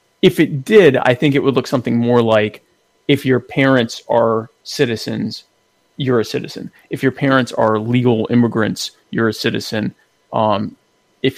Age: 20-39